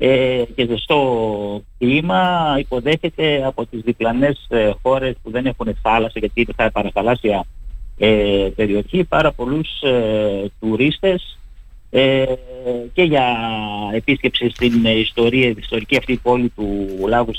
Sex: male